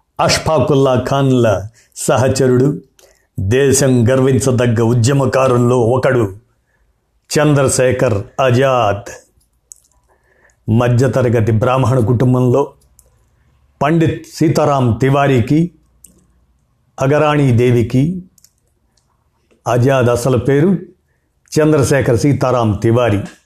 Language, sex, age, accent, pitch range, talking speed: Telugu, male, 50-69, native, 115-145 Hz, 55 wpm